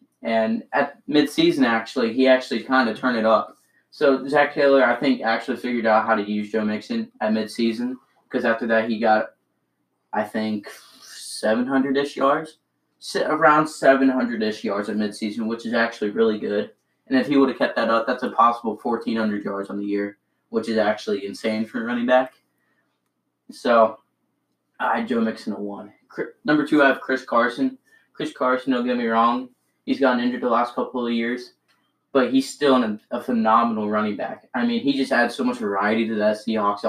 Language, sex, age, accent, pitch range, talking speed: English, male, 20-39, American, 110-135 Hz, 190 wpm